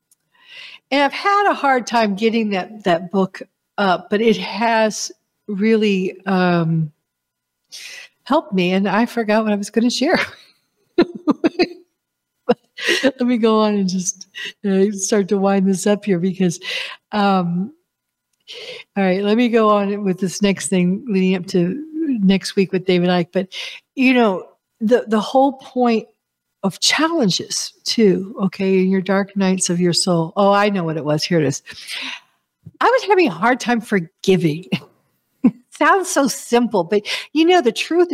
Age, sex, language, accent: 60-79, female, English, American